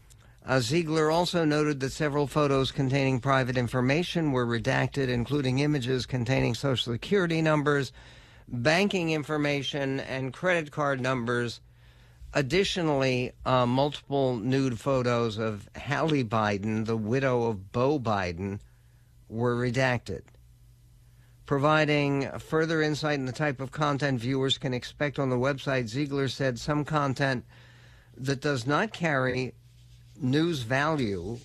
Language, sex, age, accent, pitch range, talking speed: English, male, 60-79, American, 120-145 Hz, 120 wpm